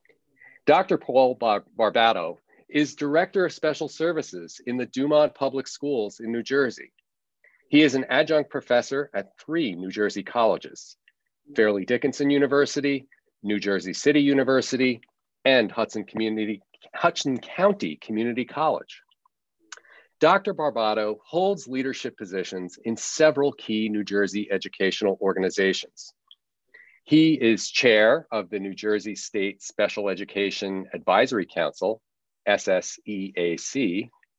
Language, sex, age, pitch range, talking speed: English, male, 40-59, 105-145 Hz, 110 wpm